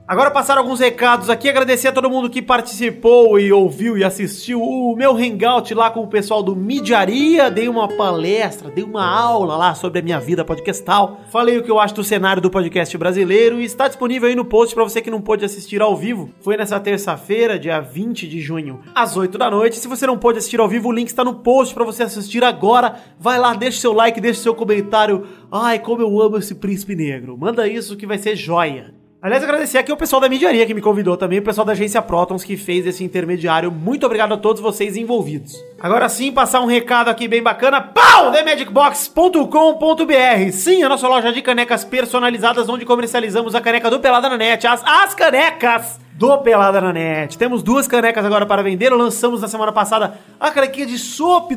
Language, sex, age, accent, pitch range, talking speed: Portuguese, male, 30-49, Brazilian, 195-245 Hz, 215 wpm